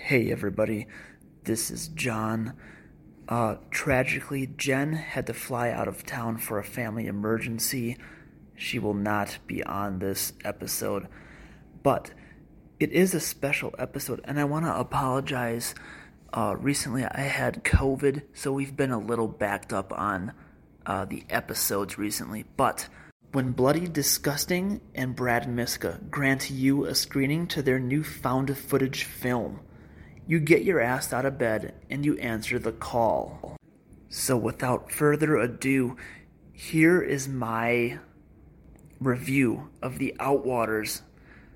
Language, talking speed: English, 135 wpm